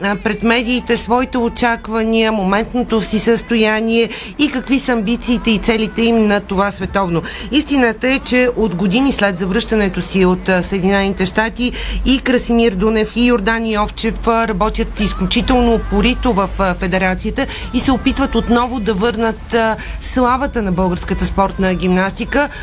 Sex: female